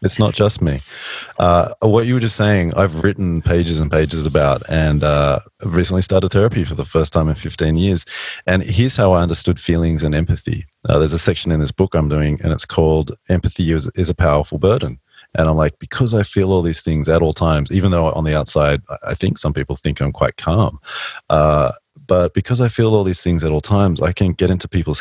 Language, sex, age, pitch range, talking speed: English, male, 30-49, 80-95 Hz, 230 wpm